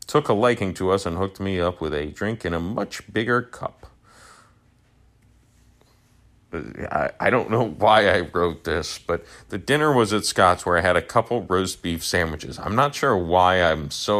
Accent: American